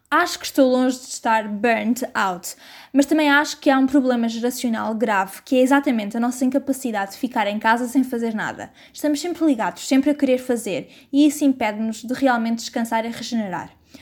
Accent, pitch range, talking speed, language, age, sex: Brazilian, 225-275 Hz, 195 wpm, Portuguese, 20-39, female